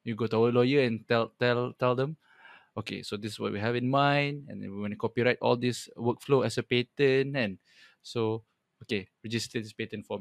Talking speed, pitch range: 220 wpm, 115-130 Hz